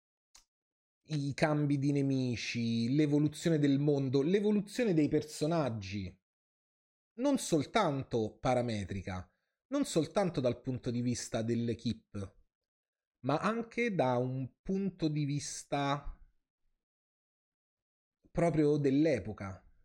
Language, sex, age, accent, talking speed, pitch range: Italian, male, 30-49, native, 90 wpm, 115-155 Hz